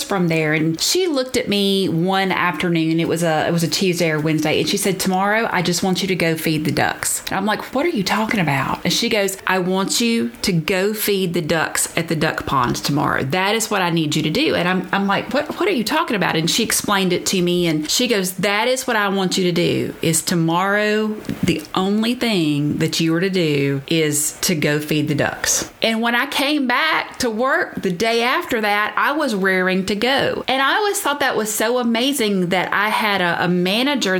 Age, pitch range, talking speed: 30-49, 170-230 Hz, 240 wpm